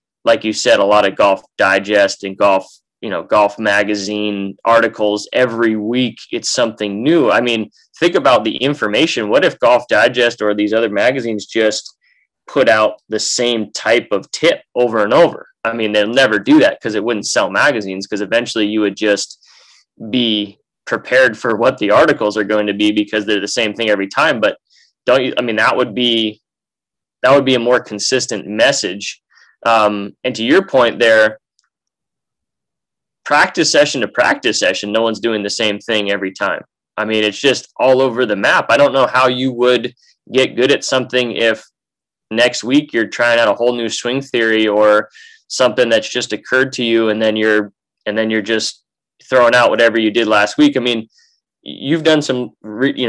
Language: English